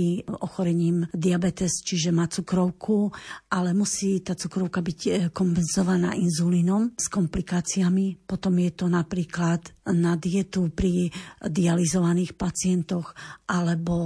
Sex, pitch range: female, 170-195 Hz